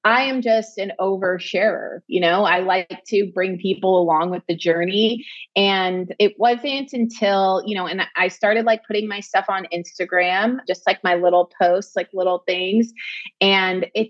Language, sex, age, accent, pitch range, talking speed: English, female, 30-49, American, 185-245 Hz, 175 wpm